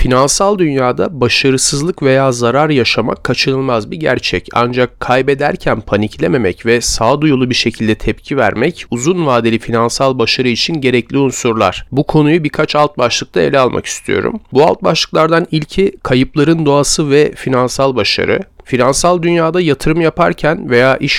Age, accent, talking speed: 40-59, native, 135 wpm